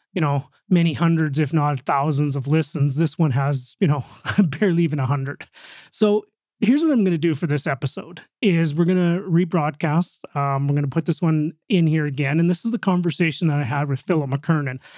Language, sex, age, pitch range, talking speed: English, male, 30-49, 145-180 Hz, 215 wpm